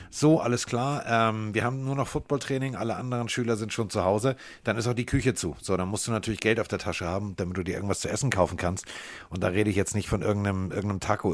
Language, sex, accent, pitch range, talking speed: German, male, German, 95-120 Hz, 265 wpm